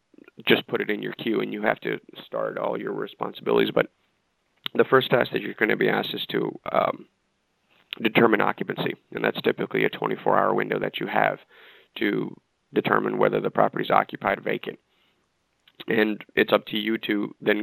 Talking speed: 185 wpm